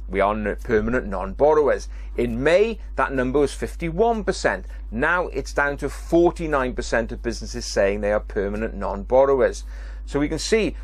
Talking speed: 145 wpm